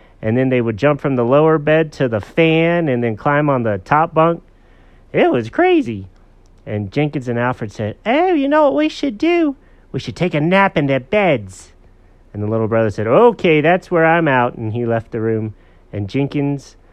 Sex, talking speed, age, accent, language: male, 210 wpm, 40-59, American, English